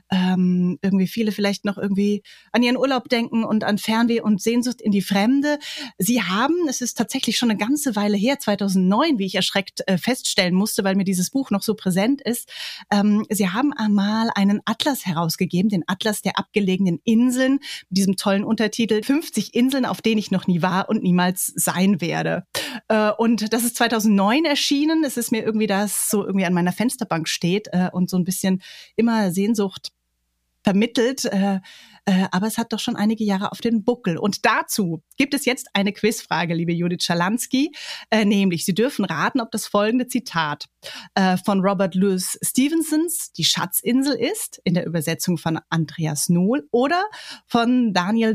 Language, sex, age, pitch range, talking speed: German, female, 30-49, 185-235 Hz, 175 wpm